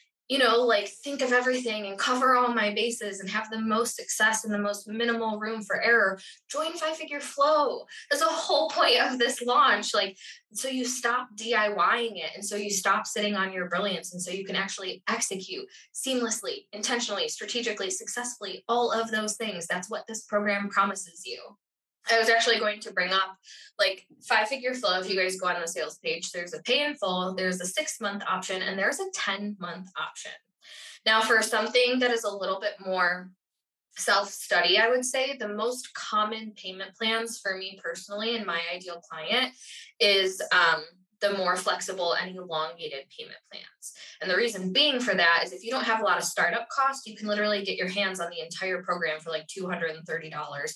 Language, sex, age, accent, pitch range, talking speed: English, female, 10-29, American, 190-240 Hz, 190 wpm